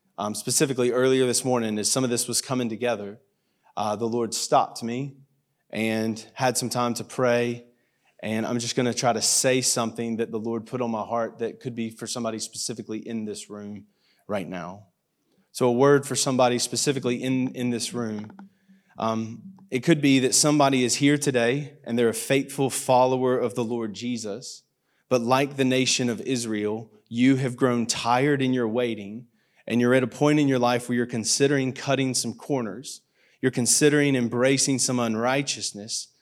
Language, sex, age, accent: English, male, 30-49, American